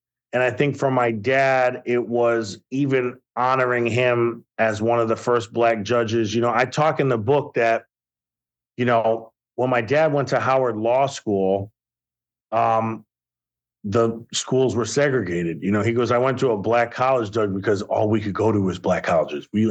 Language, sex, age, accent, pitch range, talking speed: English, male, 40-59, American, 110-130 Hz, 190 wpm